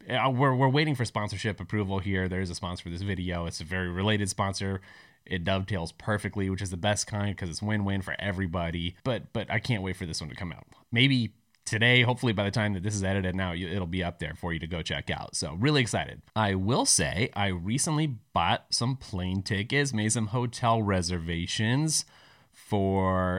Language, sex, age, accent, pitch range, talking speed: English, male, 30-49, American, 95-115 Hz, 210 wpm